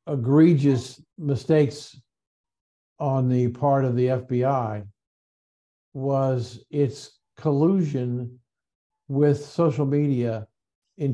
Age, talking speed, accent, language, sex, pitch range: 50-69, 80 wpm, American, English, male, 125-145 Hz